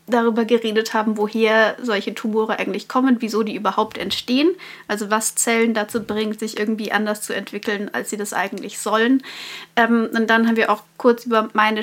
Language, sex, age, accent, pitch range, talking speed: German, female, 30-49, German, 215-245 Hz, 185 wpm